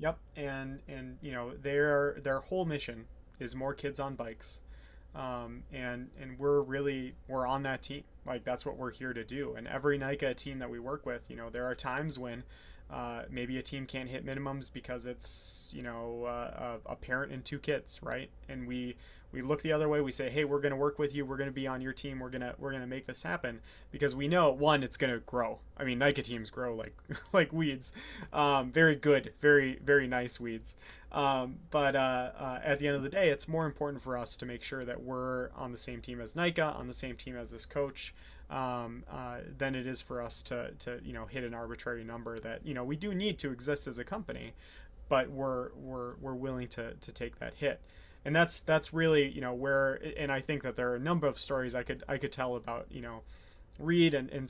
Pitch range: 125-140 Hz